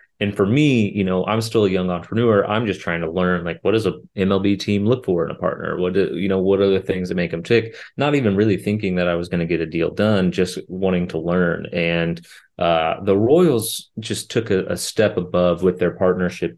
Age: 30-49